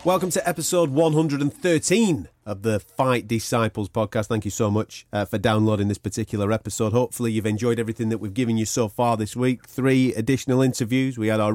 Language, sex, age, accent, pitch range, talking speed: English, male, 30-49, British, 105-155 Hz, 190 wpm